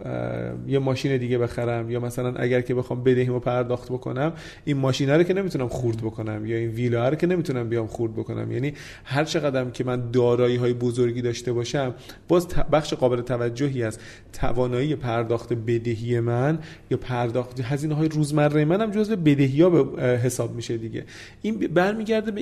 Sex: male